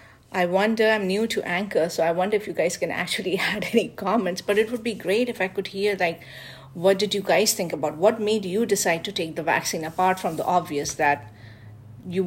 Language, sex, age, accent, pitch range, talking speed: English, female, 50-69, Indian, 175-210 Hz, 230 wpm